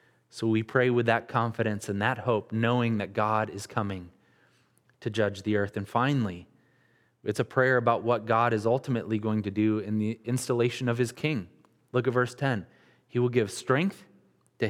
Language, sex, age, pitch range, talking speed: English, male, 20-39, 115-140 Hz, 190 wpm